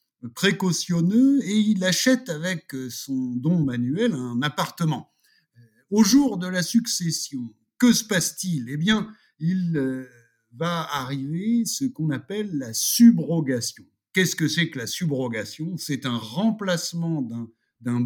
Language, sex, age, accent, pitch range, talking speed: French, male, 60-79, French, 130-195 Hz, 130 wpm